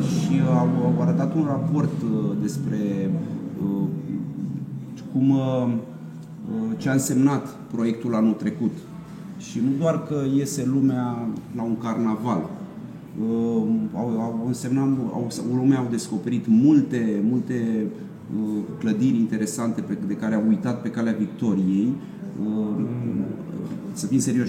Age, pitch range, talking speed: 30-49, 110-145 Hz, 120 wpm